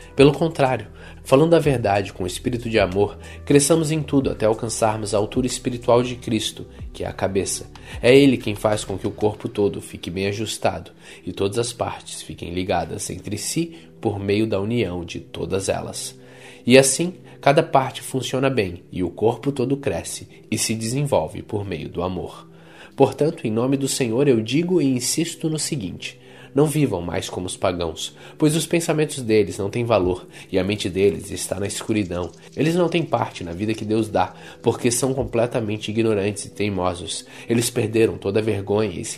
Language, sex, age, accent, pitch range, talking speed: Portuguese, male, 20-39, Brazilian, 100-135 Hz, 185 wpm